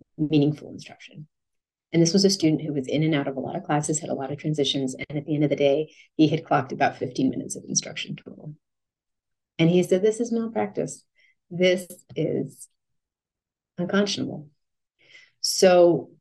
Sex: female